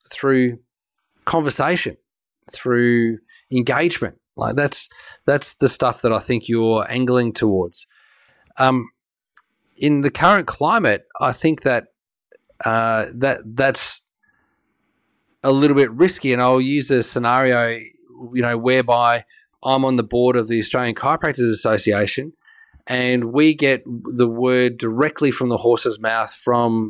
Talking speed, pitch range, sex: 130 wpm, 115-135 Hz, male